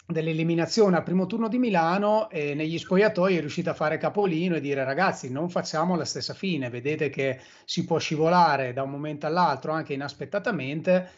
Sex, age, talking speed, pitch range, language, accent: male, 30-49, 175 wpm, 140-180 Hz, Italian, native